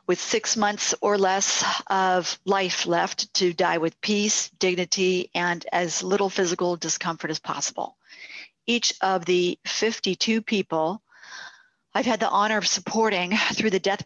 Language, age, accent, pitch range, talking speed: English, 50-69, American, 180-215 Hz, 145 wpm